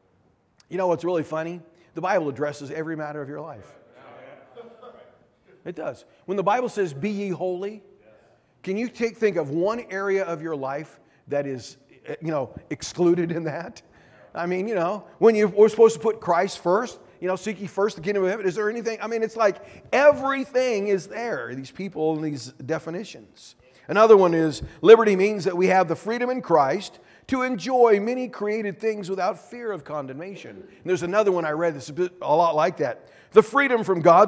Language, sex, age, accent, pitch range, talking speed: English, male, 40-59, American, 150-205 Hz, 190 wpm